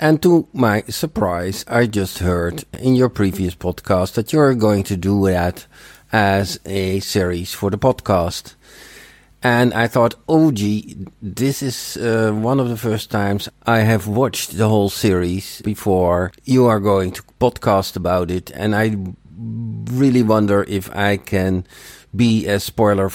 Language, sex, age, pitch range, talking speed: English, male, 50-69, 95-115 Hz, 155 wpm